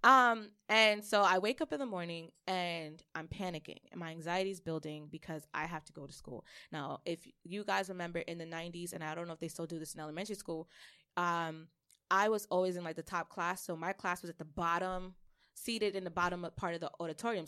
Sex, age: female, 20-39